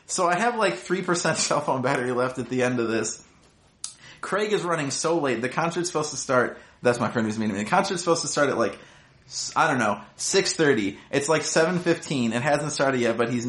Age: 30-49